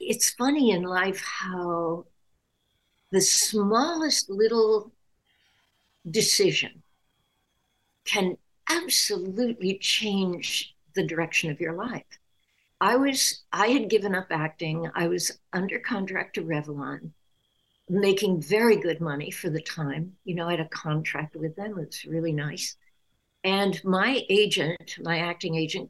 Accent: American